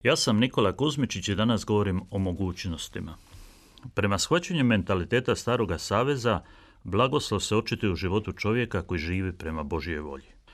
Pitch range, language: 90-115 Hz, Croatian